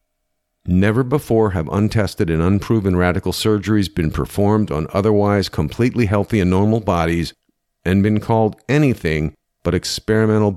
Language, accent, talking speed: English, American, 130 wpm